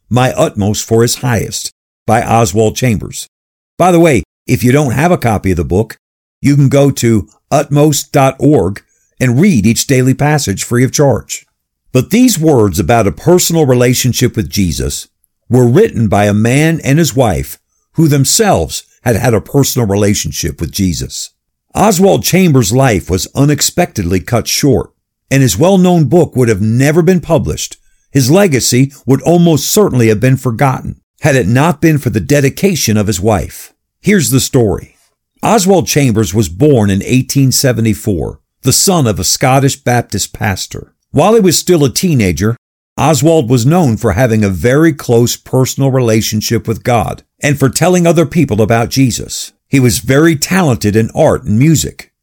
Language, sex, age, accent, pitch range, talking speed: English, male, 50-69, American, 110-150 Hz, 165 wpm